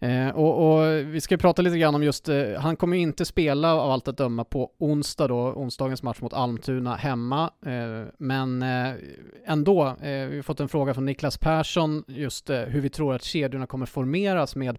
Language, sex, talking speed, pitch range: Swedish, male, 180 wpm, 120-145 Hz